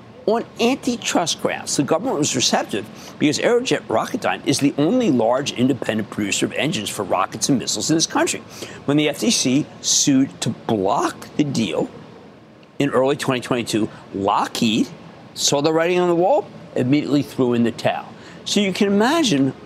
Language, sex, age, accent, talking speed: English, male, 50-69, American, 160 wpm